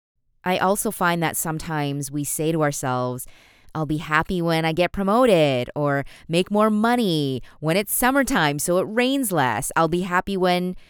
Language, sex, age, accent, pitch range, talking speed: English, female, 20-39, American, 145-180 Hz, 170 wpm